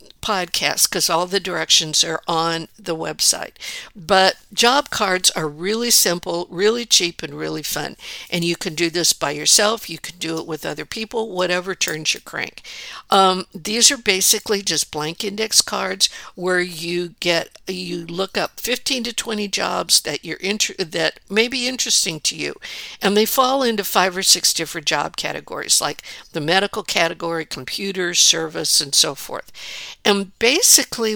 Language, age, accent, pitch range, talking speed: English, 60-79, American, 165-210 Hz, 165 wpm